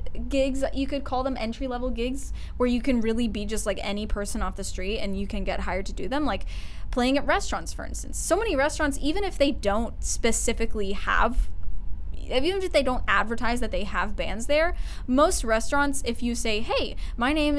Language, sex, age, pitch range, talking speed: English, female, 10-29, 205-260 Hz, 210 wpm